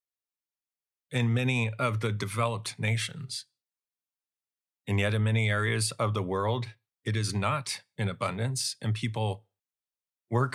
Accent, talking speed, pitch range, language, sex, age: American, 125 wpm, 110-140 Hz, English, male, 40-59